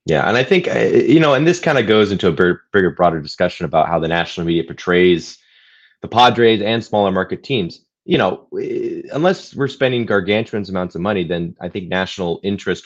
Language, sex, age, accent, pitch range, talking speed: English, male, 20-39, American, 85-135 Hz, 195 wpm